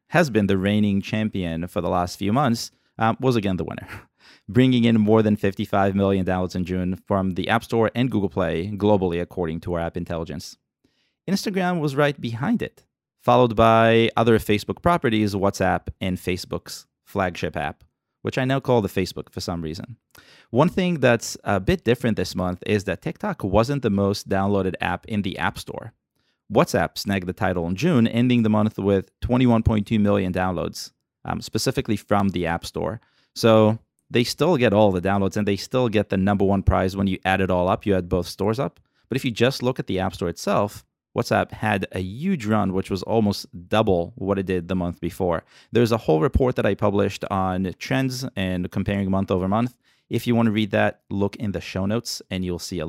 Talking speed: 205 wpm